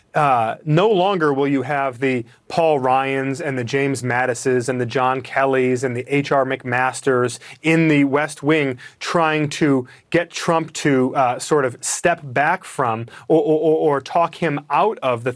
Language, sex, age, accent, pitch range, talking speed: English, male, 30-49, American, 135-175 Hz, 170 wpm